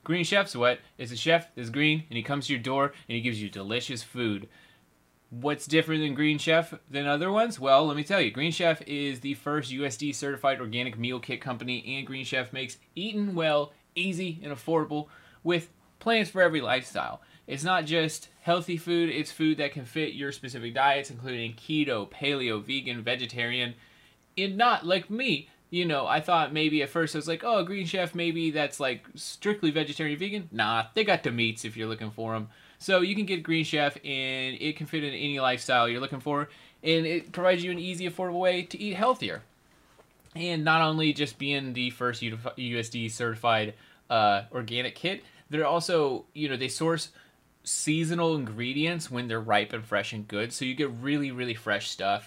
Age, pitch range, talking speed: 30-49, 120-165 Hz, 195 wpm